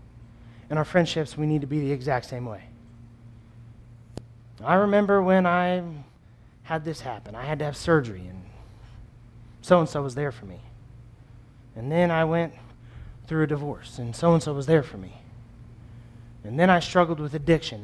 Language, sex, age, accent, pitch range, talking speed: English, male, 30-49, American, 115-165 Hz, 160 wpm